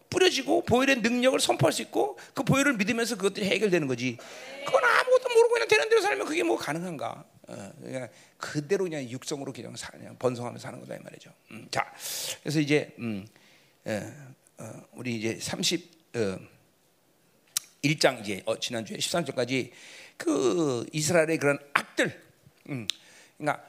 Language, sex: Korean, male